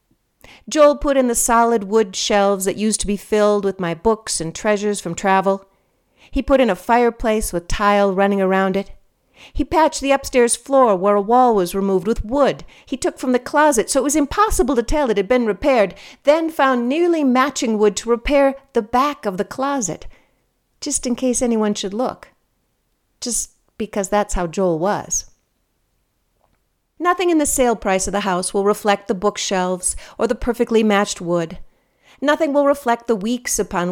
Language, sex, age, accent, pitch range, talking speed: English, female, 50-69, American, 195-265 Hz, 180 wpm